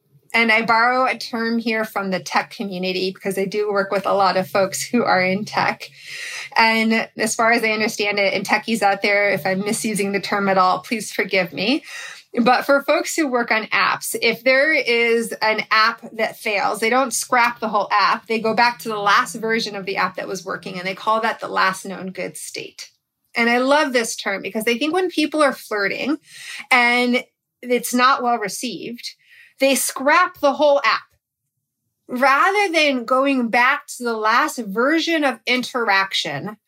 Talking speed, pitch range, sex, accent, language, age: 190 wpm, 205-255 Hz, female, American, English, 30-49